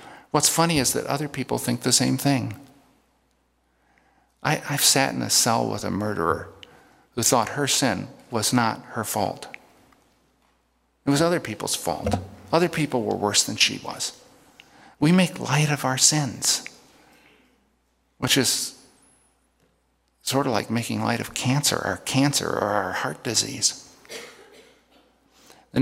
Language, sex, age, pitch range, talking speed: English, male, 50-69, 105-145 Hz, 140 wpm